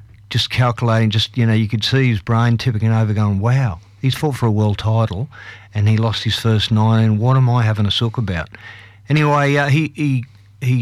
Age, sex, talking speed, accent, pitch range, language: 50-69, male, 215 wpm, Australian, 110-135 Hz, English